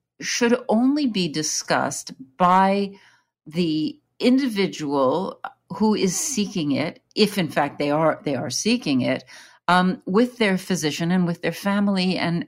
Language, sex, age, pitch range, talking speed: English, female, 50-69, 145-195 Hz, 140 wpm